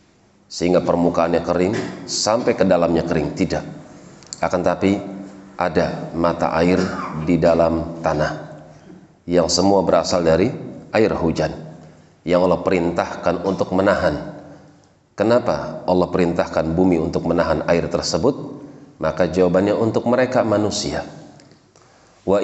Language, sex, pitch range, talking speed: Indonesian, male, 80-90 Hz, 110 wpm